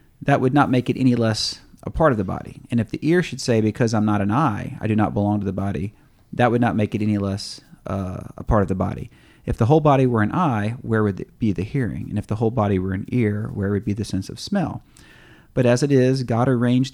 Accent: American